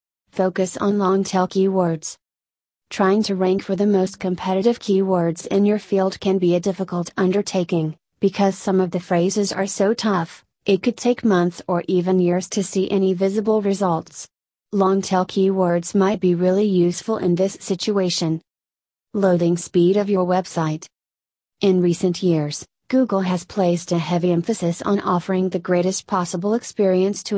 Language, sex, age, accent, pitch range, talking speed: English, female, 30-49, American, 175-200 Hz, 155 wpm